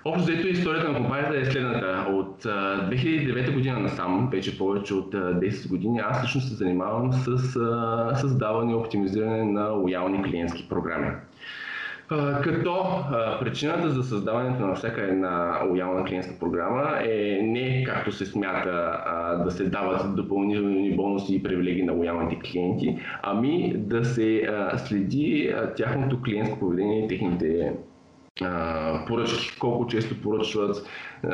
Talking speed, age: 125 wpm, 20-39